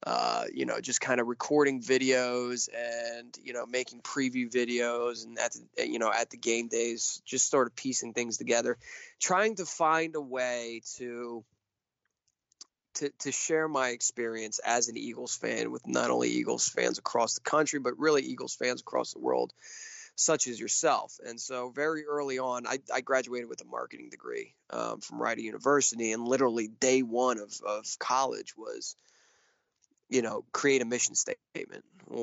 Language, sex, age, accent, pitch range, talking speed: English, male, 20-39, American, 115-145 Hz, 175 wpm